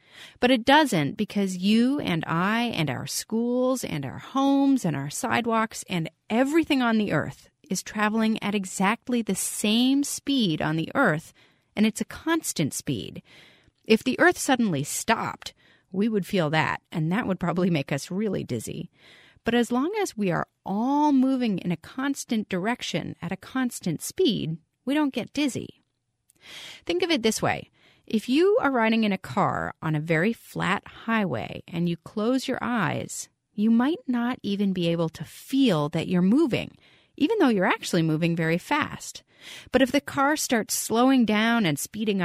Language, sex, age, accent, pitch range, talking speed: English, female, 30-49, American, 170-245 Hz, 175 wpm